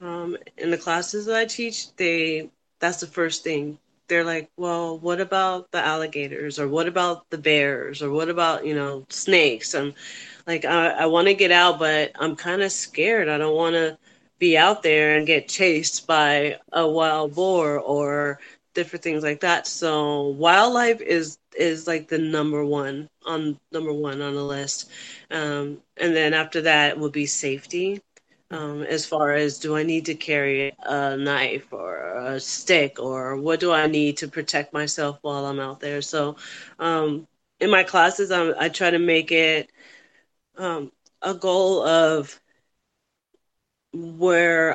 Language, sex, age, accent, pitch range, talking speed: English, female, 30-49, American, 150-175 Hz, 170 wpm